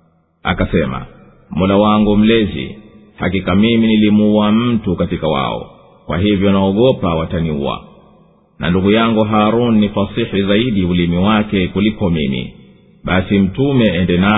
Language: Swahili